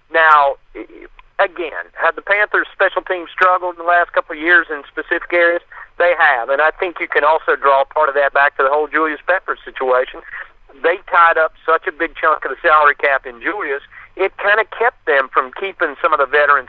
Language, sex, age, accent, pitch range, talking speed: English, male, 50-69, American, 140-190 Hz, 215 wpm